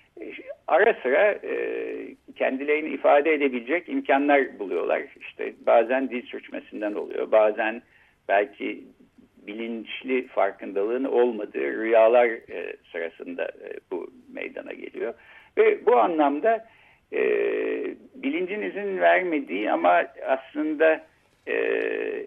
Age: 60-79